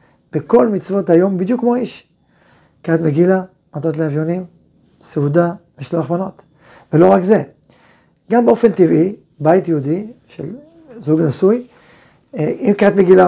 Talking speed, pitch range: 115 wpm, 160-205 Hz